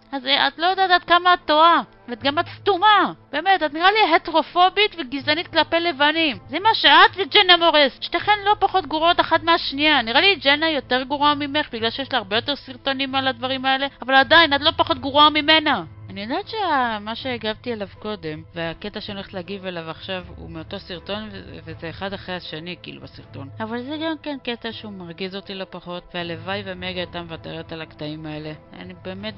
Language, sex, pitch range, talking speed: Hebrew, female, 175-285 Hz, 190 wpm